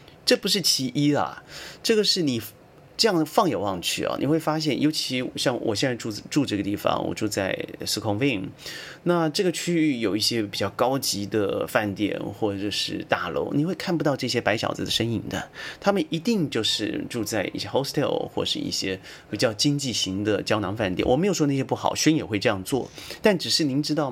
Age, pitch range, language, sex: 30-49, 110-155 Hz, Chinese, male